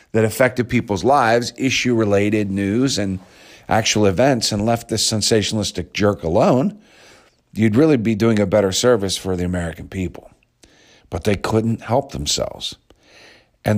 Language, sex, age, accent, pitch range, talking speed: English, male, 50-69, American, 90-110 Hz, 140 wpm